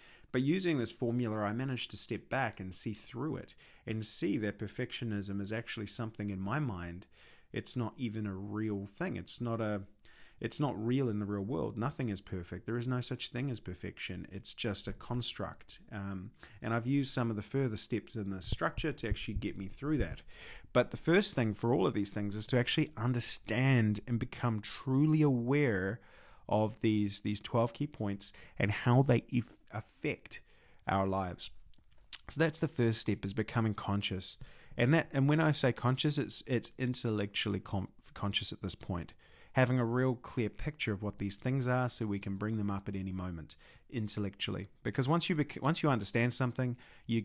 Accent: Australian